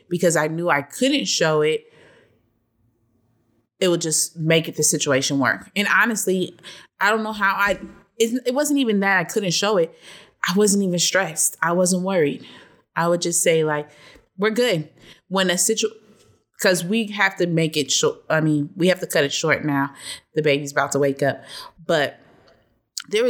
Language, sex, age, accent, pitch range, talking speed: English, female, 20-39, American, 150-195 Hz, 185 wpm